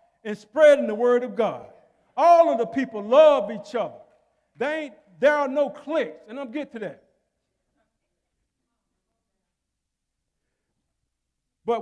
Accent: American